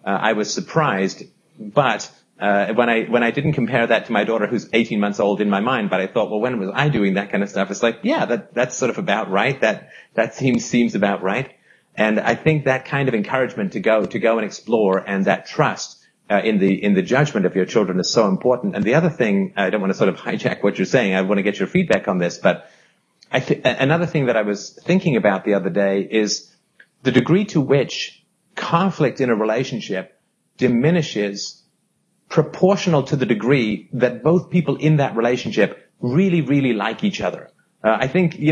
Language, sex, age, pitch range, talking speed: English, male, 40-59, 100-155 Hz, 220 wpm